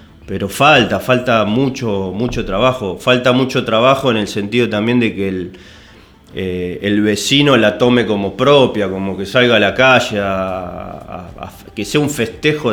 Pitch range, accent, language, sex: 95-115 Hz, Argentinian, Spanish, male